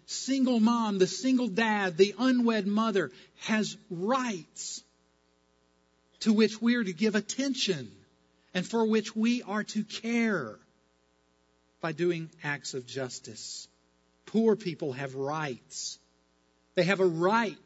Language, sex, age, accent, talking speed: English, male, 50-69, American, 125 wpm